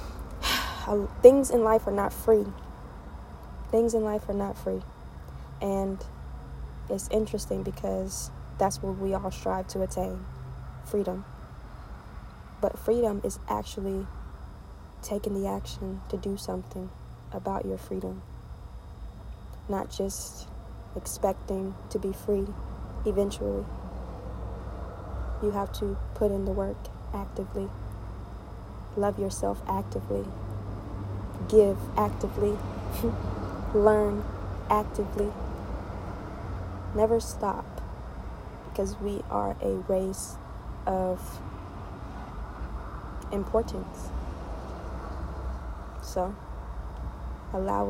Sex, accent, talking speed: female, American, 90 wpm